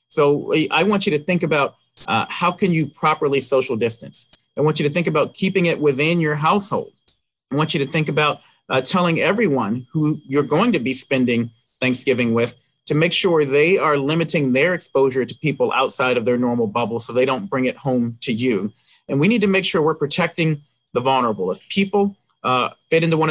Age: 30-49